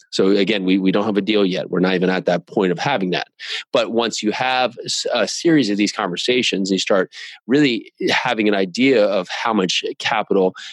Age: 30-49